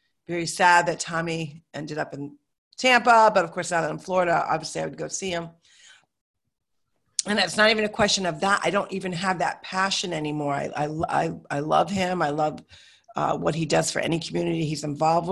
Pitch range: 165-205 Hz